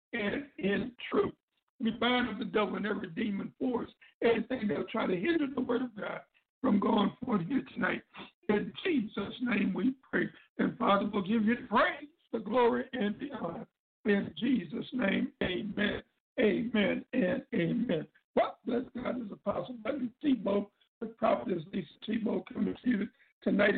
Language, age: English, 60-79